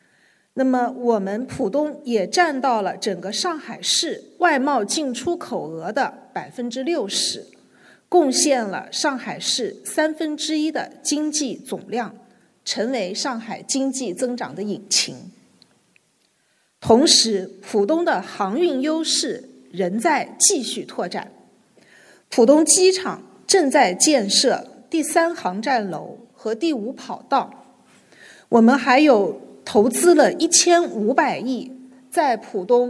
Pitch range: 230-335 Hz